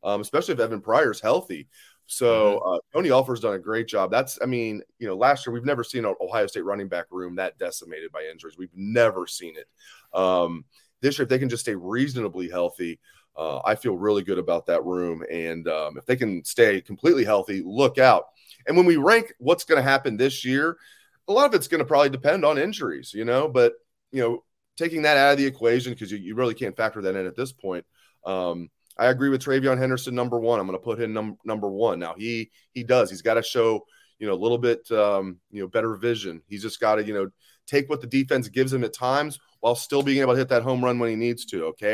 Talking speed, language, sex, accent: 240 wpm, English, male, American